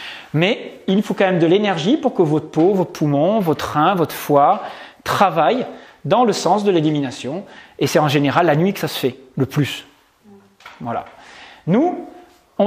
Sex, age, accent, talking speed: male, 40-59, French, 180 wpm